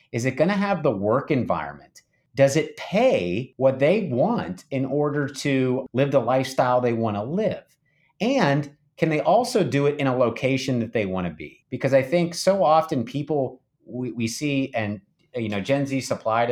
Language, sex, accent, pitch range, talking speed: English, male, American, 115-145 Hz, 195 wpm